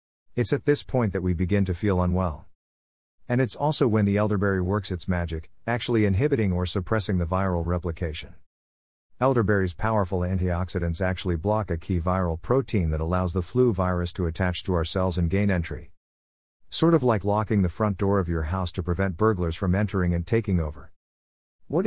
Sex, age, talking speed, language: male, 50-69, 185 wpm, English